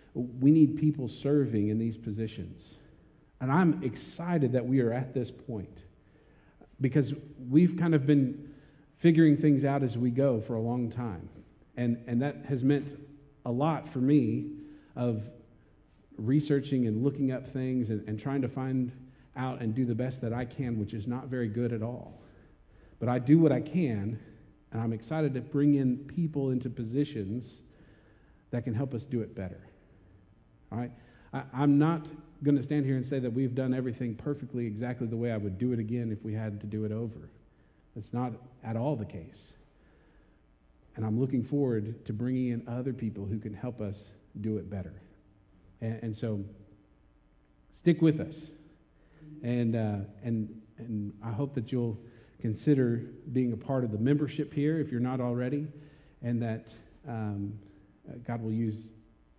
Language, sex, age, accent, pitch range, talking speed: English, male, 50-69, American, 110-140 Hz, 170 wpm